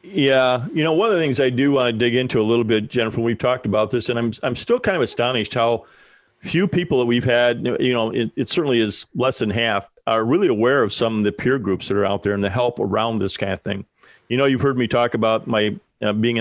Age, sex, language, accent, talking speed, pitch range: 40-59, male, English, American, 270 wpm, 110-125 Hz